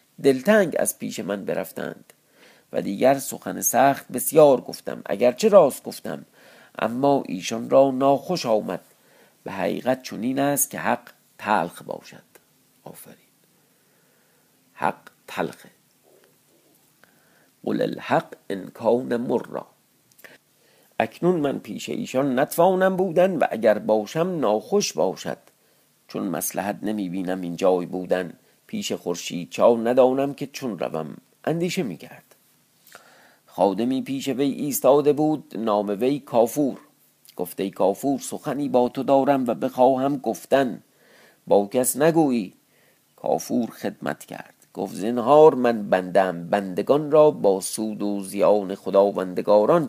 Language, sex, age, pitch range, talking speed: Persian, male, 50-69, 105-150 Hz, 115 wpm